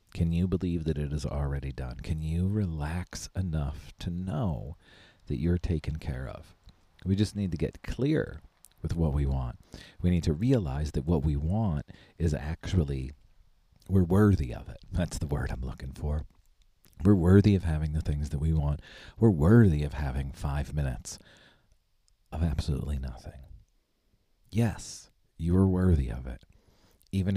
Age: 40-59